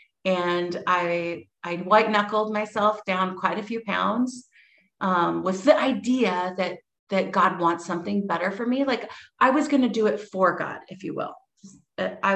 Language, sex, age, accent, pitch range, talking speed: English, female, 30-49, American, 170-215 Hz, 170 wpm